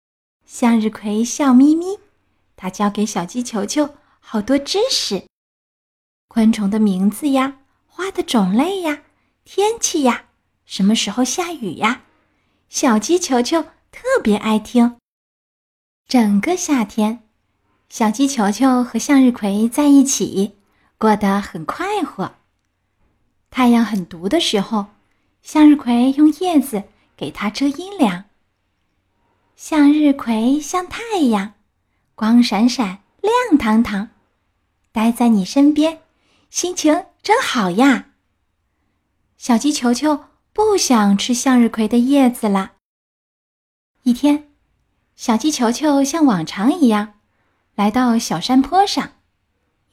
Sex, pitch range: female, 205-295 Hz